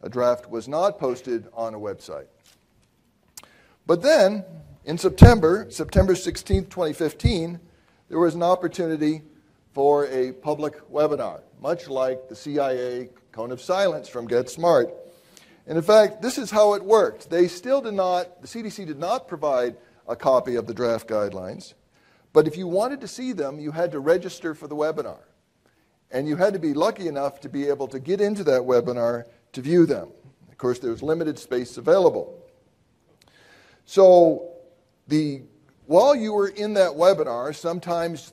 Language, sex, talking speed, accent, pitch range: English, male, 165 wpm, American, 125-175 Hz